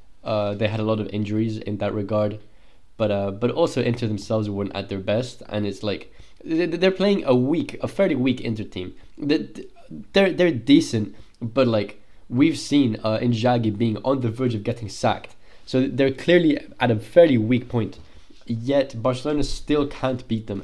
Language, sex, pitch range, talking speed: English, male, 105-130 Hz, 180 wpm